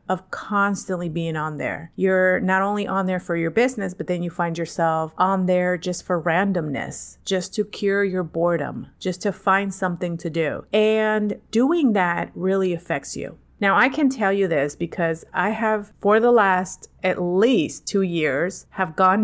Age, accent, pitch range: 30-49, American, 175-210 Hz